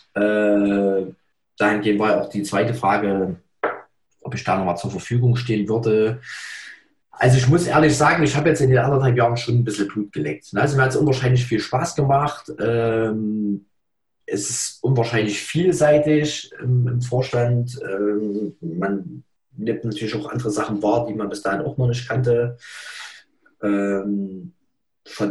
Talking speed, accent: 145 wpm, German